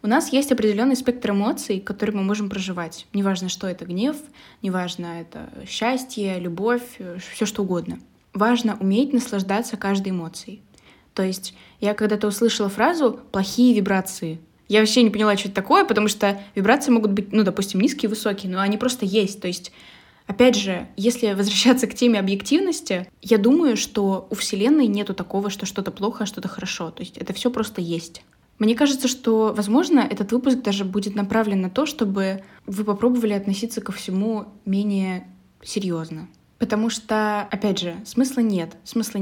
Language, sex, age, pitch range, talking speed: Russian, female, 10-29, 190-230 Hz, 165 wpm